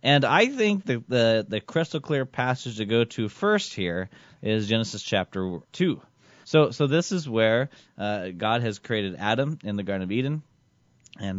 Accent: American